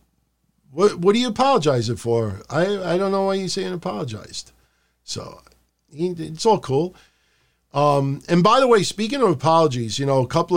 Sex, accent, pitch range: male, American, 120-170 Hz